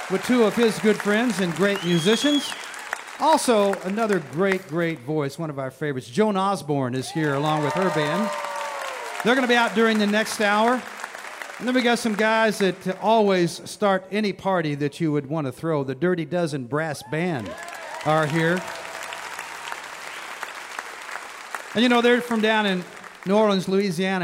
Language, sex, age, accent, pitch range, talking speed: English, male, 50-69, American, 140-200 Hz, 170 wpm